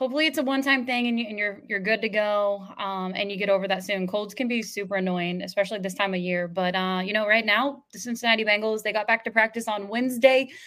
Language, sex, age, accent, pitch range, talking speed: English, female, 20-39, American, 195-230 Hz, 250 wpm